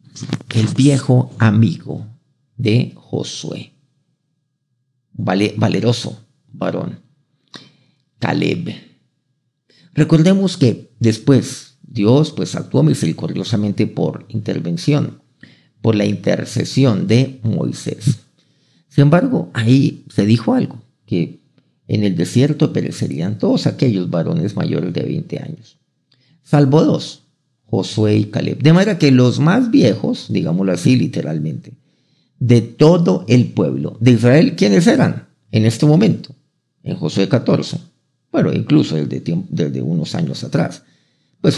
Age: 50-69